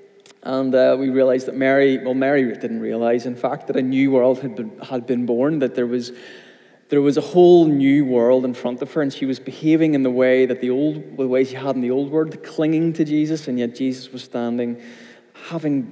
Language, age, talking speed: English, 20-39, 230 wpm